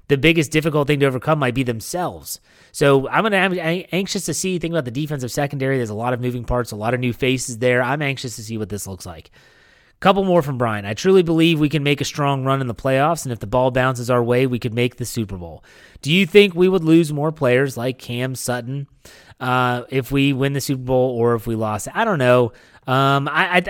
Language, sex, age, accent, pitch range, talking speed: English, male, 30-49, American, 120-155 Hz, 245 wpm